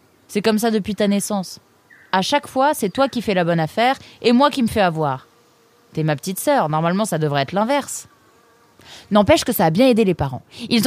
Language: French